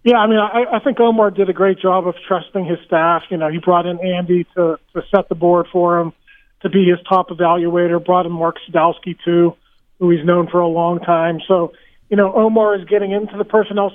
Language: English